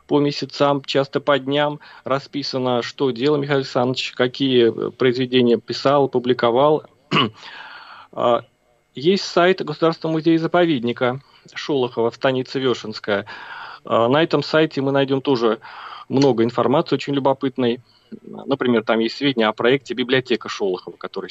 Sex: male